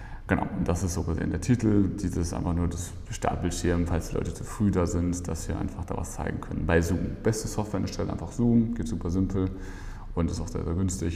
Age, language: 30-49, German